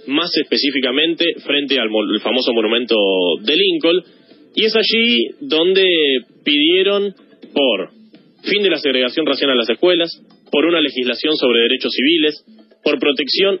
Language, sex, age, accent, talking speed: Spanish, male, 20-39, Argentinian, 130 wpm